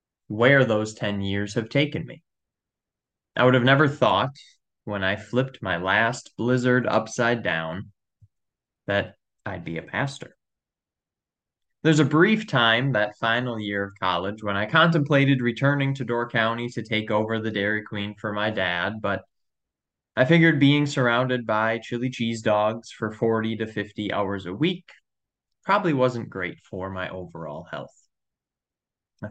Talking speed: 150 wpm